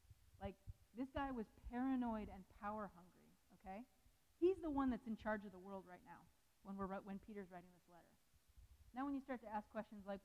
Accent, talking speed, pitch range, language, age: American, 205 wpm, 195-245 Hz, English, 30-49